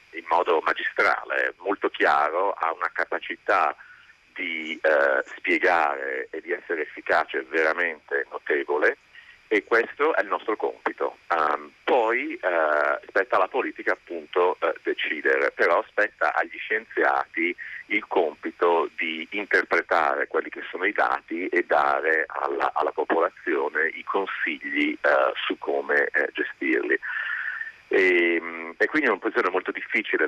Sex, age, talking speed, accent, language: male, 40-59, 130 wpm, native, Italian